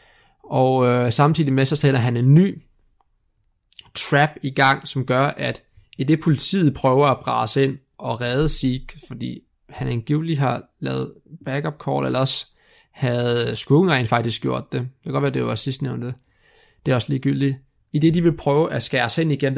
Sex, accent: male, native